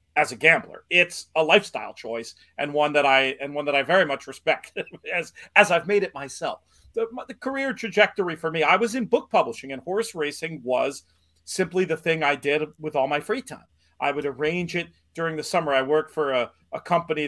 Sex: male